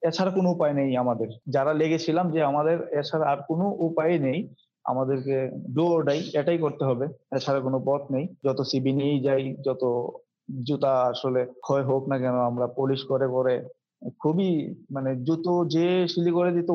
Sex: male